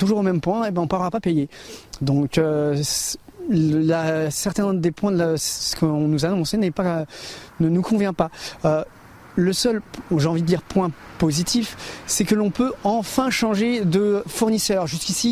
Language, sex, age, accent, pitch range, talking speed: French, male, 30-49, French, 160-200 Hz, 190 wpm